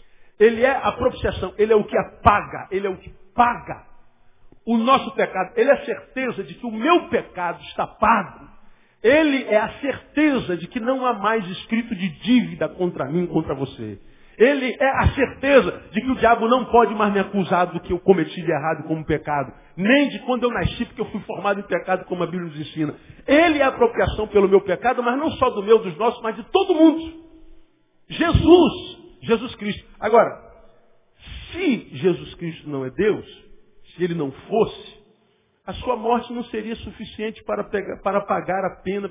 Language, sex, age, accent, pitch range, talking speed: Portuguese, male, 50-69, Brazilian, 175-240 Hz, 190 wpm